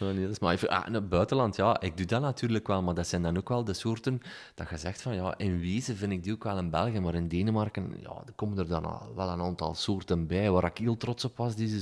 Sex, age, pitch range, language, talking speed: male, 30-49, 90-120 Hz, Dutch, 280 wpm